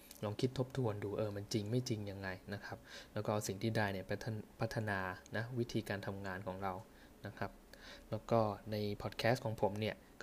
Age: 20-39